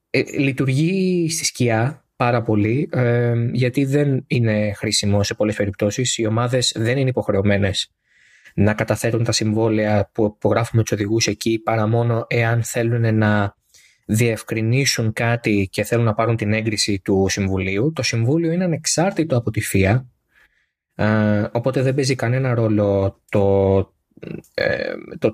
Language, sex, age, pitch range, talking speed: Greek, male, 20-39, 105-140 Hz, 140 wpm